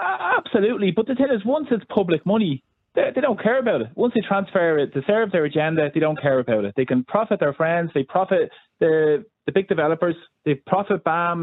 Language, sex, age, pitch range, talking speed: English, male, 20-39, 135-195 Hz, 220 wpm